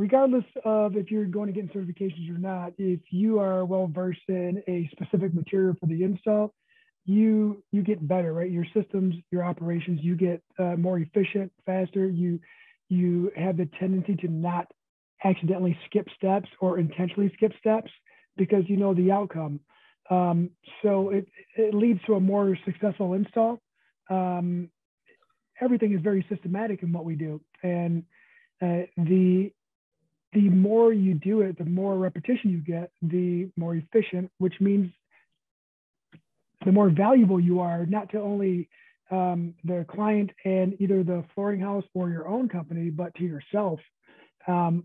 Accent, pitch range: American, 175-205 Hz